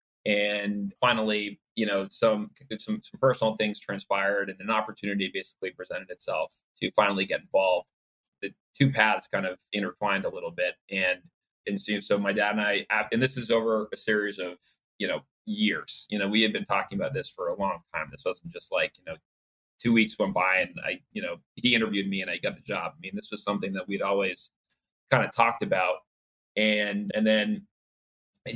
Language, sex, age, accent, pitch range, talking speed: English, male, 30-49, American, 100-115 Hz, 200 wpm